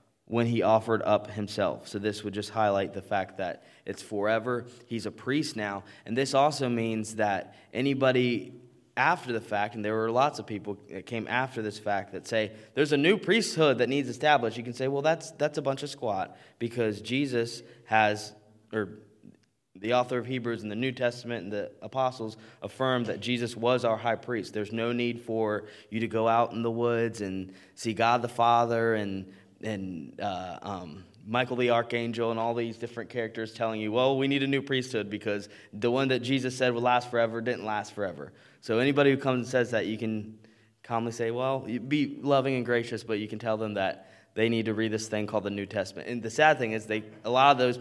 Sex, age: male, 20-39